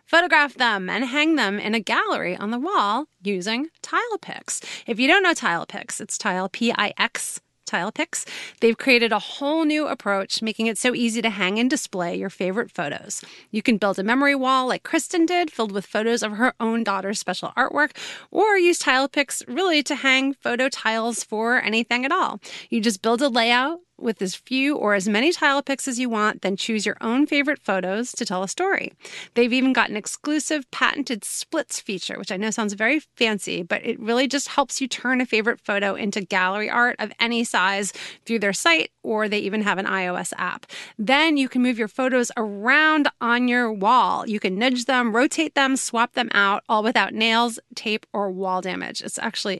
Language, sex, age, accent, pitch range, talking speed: English, female, 30-49, American, 210-275 Hz, 205 wpm